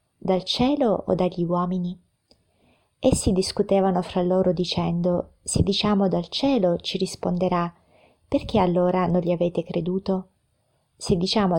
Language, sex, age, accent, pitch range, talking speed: Italian, female, 30-49, native, 175-205 Hz, 125 wpm